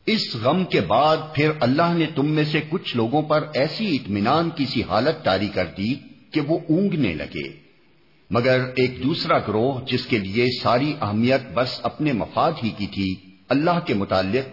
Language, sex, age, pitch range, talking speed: Urdu, male, 50-69, 105-150 Hz, 175 wpm